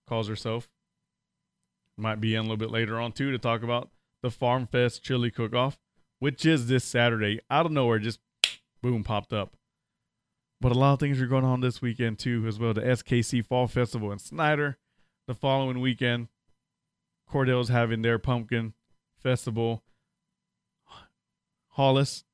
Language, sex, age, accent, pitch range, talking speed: English, male, 20-39, American, 110-125 Hz, 160 wpm